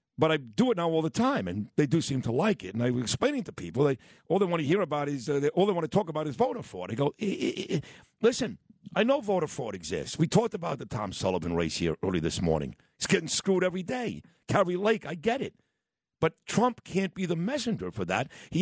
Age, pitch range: 50-69, 155-215 Hz